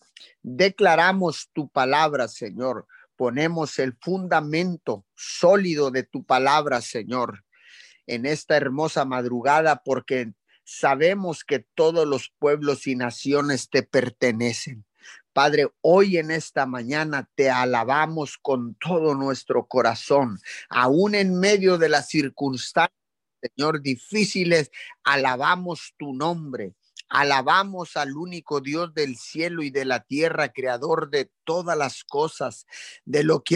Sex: male